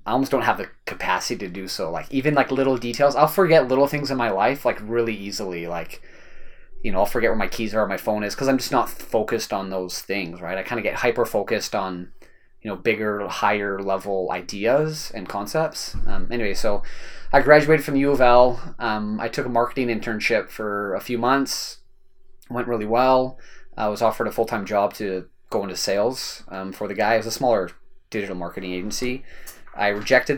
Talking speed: 215 wpm